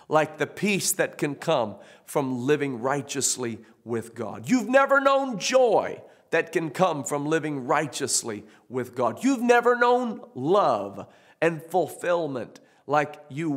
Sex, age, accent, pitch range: male, 50-69, American, 130-185 Hz